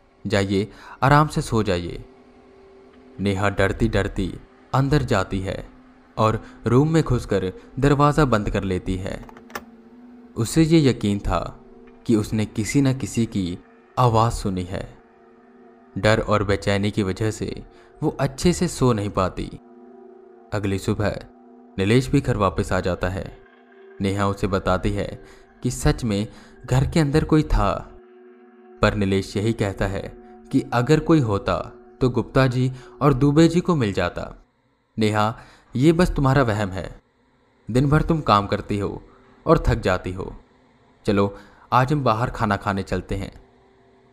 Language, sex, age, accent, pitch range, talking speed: Hindi, male, 20-39, native, 100-130 Hz, 145 wpm